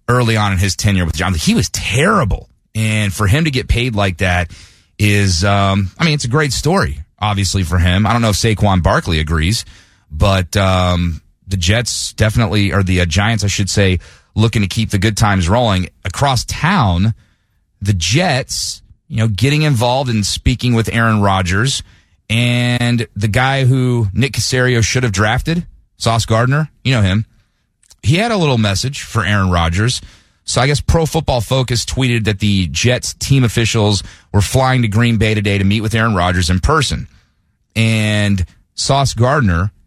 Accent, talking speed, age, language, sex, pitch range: American, 180 wpm, 30-49, English, male, 95-120 Hz